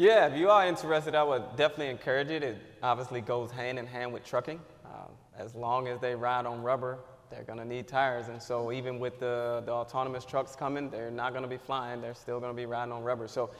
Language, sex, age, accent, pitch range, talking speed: English, male, 20-39, American, 125-140 Hz, 245 wpm